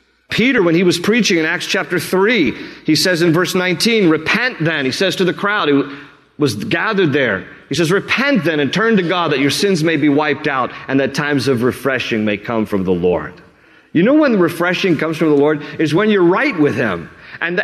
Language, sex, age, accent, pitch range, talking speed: English, male, 40-59, American, 145-220 Hz, 220 wpm